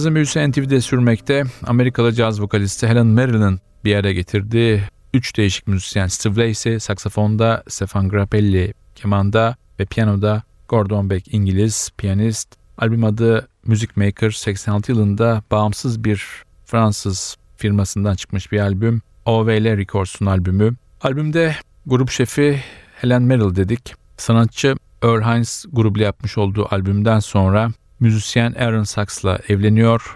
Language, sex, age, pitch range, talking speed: Turkish, male, 40-59, 100-115 Hz, 115 wpm